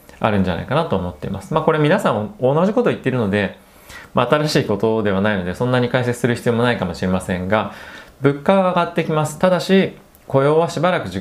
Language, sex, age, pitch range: Japanese, male, 20-39, 95-140 Hz